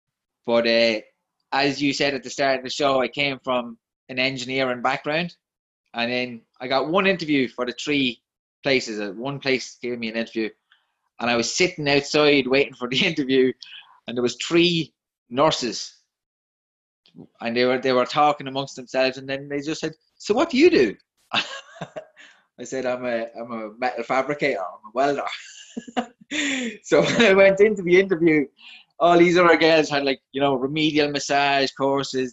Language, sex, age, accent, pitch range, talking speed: English, male, 20-39, British, 125-150 Hz, 175 wpm